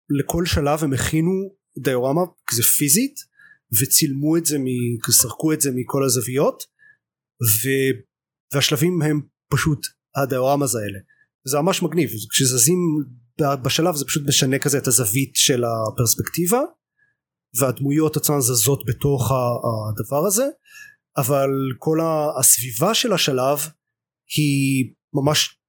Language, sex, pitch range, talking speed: Hebrew, male, 125-155 Hz, 110 wpm